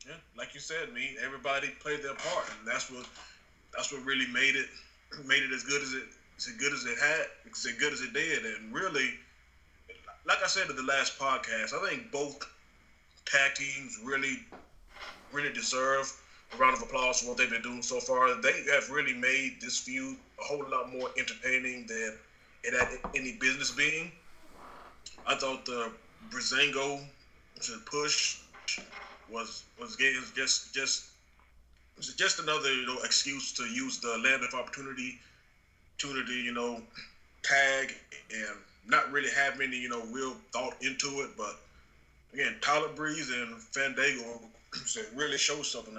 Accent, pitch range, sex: American, 115-140 Hz, male